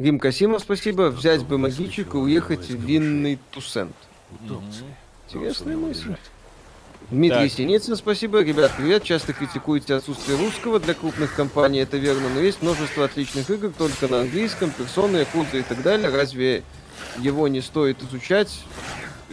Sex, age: male, 20-39